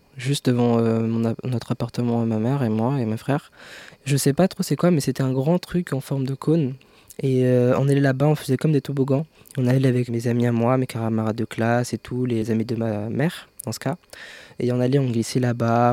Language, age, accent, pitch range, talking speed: French, 20-39, French, 115-130 Hz, 250 wpm